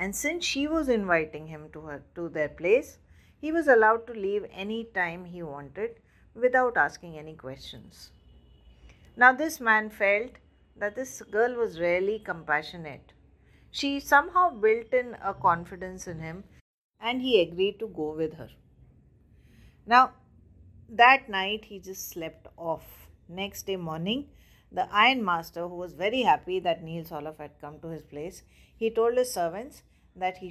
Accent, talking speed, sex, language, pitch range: Indian, 155 wpm, female, English, 155-225 Hz